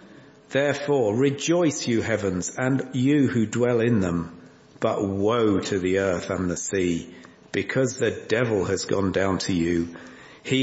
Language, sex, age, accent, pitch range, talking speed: English, male, 50-69, British, 105-140 Hz, 150 wpm